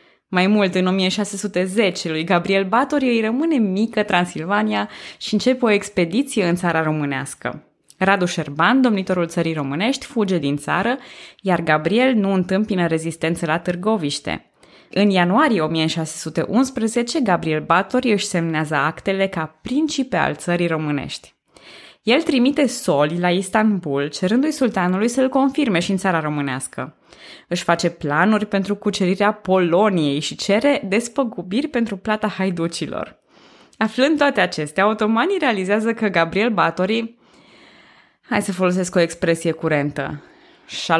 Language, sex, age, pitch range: Romanian, female, 20-39, 165-220 Hz